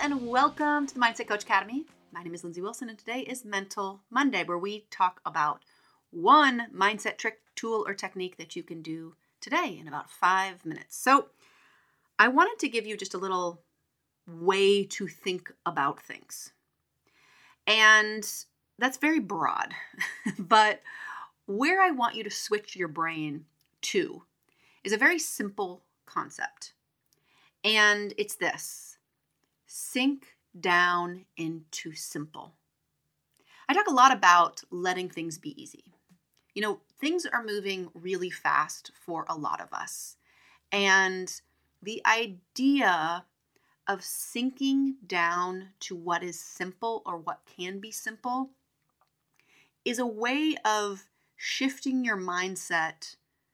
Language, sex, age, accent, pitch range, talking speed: English, female, 30-49, American, 180-245 Hz, 135 wpm